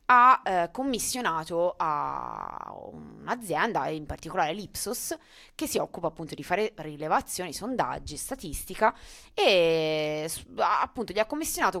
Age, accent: 20-39, native